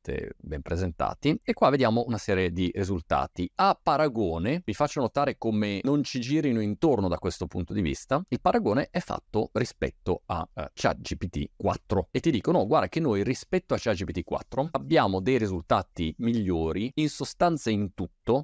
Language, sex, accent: Italian, male, native